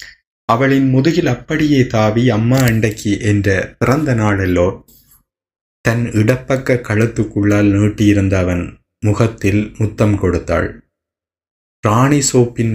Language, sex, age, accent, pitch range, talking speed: Tamil, male, 20-39, native, 95-115 Hz, 85 wpm